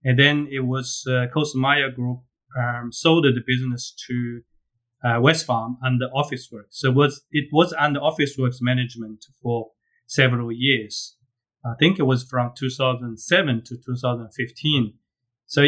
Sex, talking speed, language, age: male, 140 wpm, English, 30-49